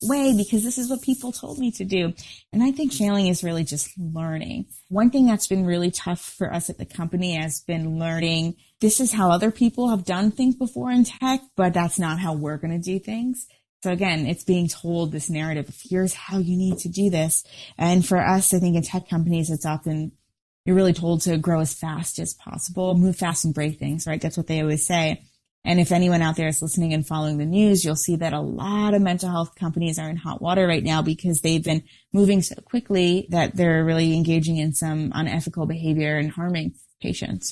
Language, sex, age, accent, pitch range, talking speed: English, female, 20-39, American, 160-185 Hz, 220 wpm